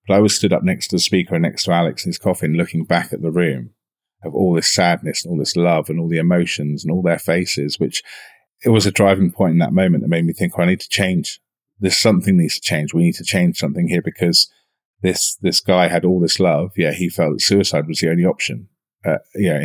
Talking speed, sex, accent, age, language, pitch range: 265 wpm, male, British, 30-49, English, 85-100 Hz